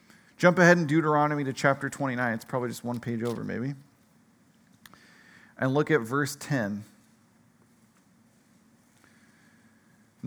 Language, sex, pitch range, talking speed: English, male, 130-155 Hz, 115 wpm